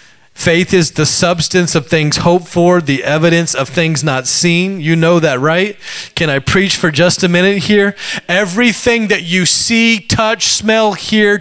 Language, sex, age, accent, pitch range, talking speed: English, male, 30-49, American, 185-230 Hz, 175 wpm